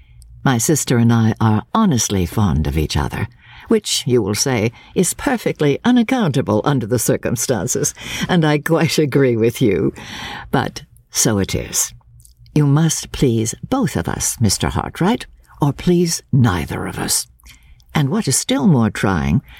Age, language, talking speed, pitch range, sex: 60-79, English, 150 wpm, 105-155 Hz, female